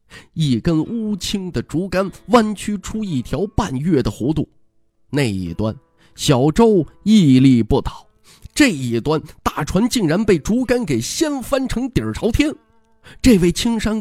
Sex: male